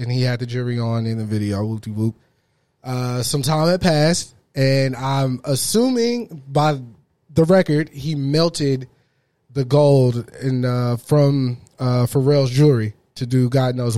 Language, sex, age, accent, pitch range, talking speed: English, male, 20-39, American, 130-160 Hz, 140 wpm